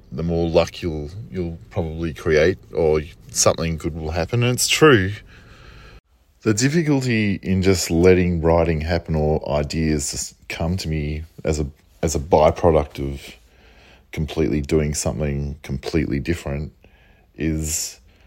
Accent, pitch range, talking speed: Australian, 75-90 Hz, 130 wpm